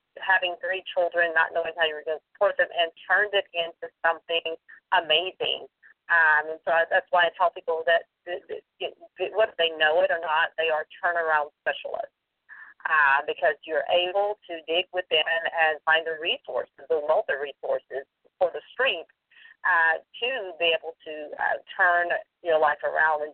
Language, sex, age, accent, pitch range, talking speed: English, female, 40-59, American, 165-225 Hz, 165 wpm